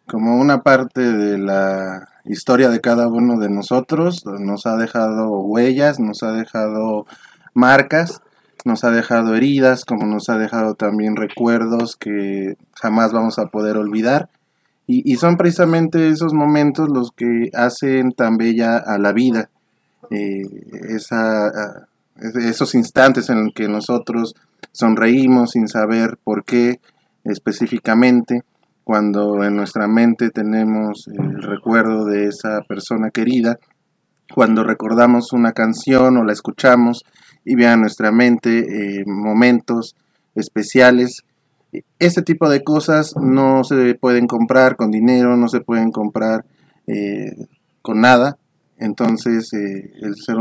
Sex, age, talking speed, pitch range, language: male, 20-39, 130 wpm, 105-125 Hz, Spanish